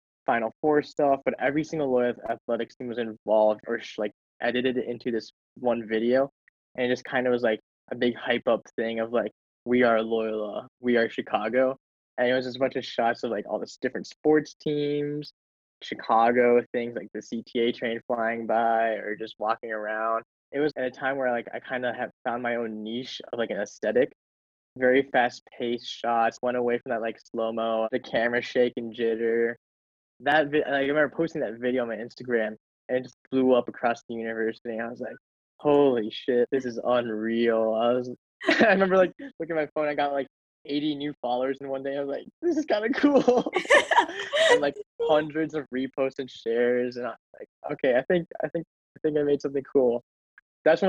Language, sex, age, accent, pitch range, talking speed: English, male, 10-29, American, 115-140 Hz, 205 wpm